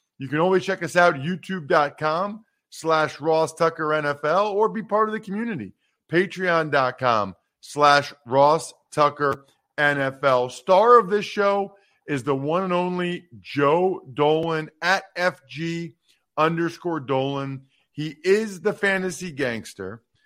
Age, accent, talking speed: 50-69, American, 125 wpm